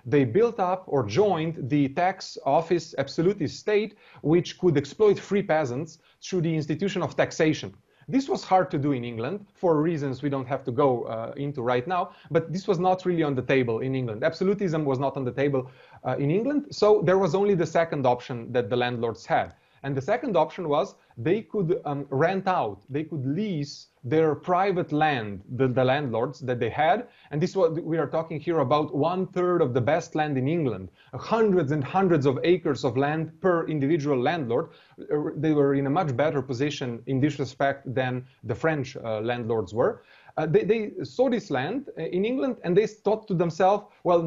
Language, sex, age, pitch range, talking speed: English, male, 30-49, 135-180 Hz, 200 wpm